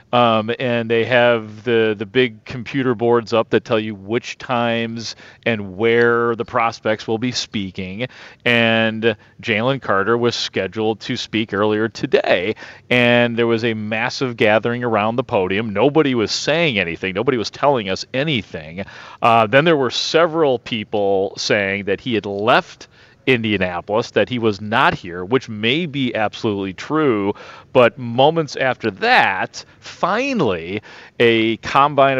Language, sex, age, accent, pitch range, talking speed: English, male, 40-59, American, 110-135 Hz, 145 wpm